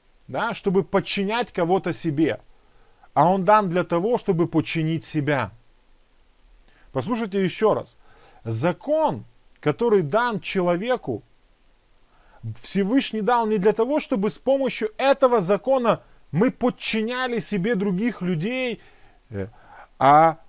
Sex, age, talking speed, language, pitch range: male, 30-49, 105 wpm, Russian, 165-230 Hz